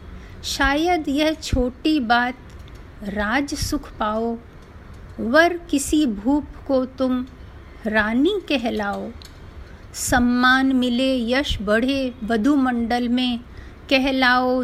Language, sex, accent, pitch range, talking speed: Hindi, female, native, 220-275 Hz, 85 wpm